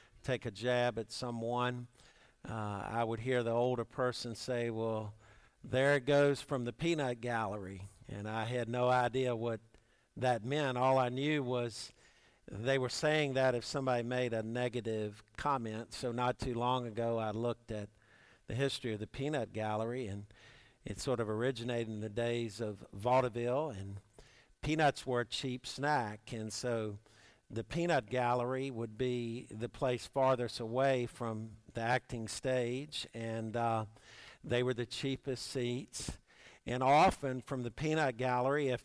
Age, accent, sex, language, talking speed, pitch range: 50-69, American, male, English, 160 wpm, 115-130 Hz